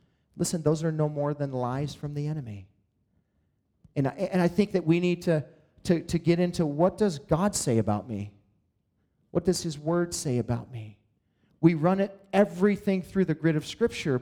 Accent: American